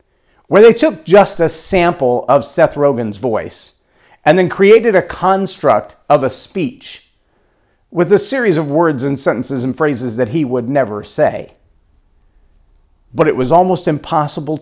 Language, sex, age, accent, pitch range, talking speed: English, male, 50-69, American, 120-180 Hz, 150 wpm